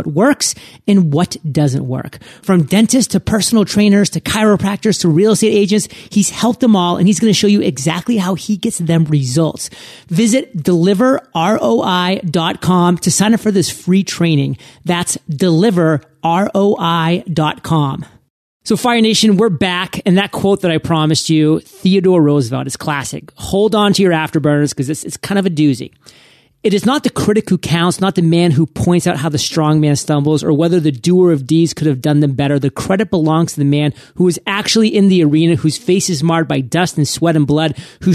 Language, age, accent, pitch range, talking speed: English, 30-49, American, 155-195 Hz, 195 wpm